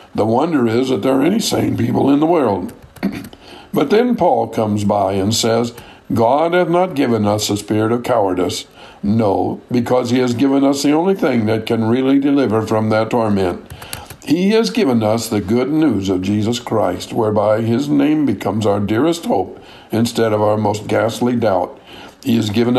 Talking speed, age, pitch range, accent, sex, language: 185 wpm, 60-79, 110-140 Hz, American, male, English